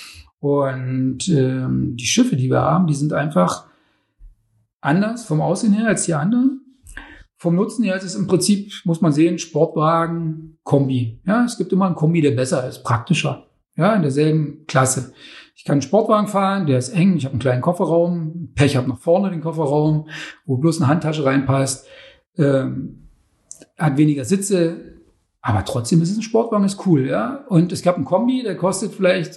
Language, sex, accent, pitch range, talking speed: German, male, German, 140-190 Hz, 180 wpm